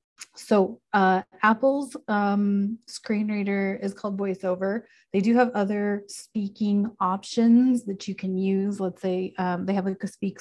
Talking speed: 155 wpm